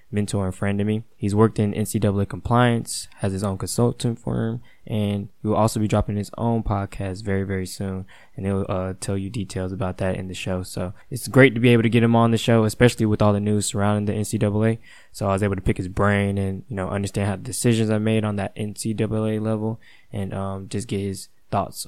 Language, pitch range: English, 100-115 Hz